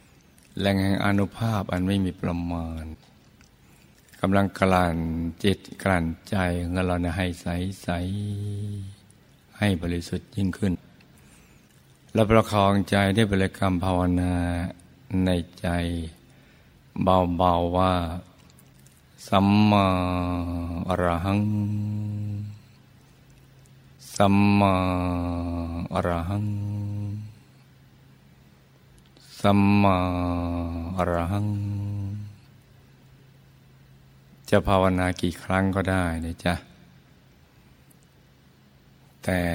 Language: Thai